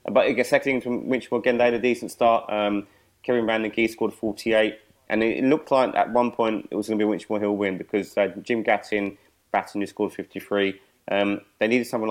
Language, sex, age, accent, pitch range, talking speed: English, male, 20-39, British, 100-110 Hz, 220 wpm